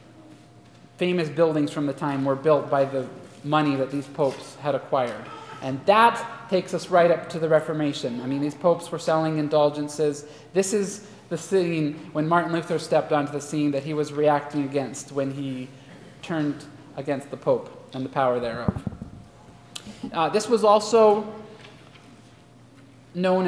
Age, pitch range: 30-49, 145-190 Hz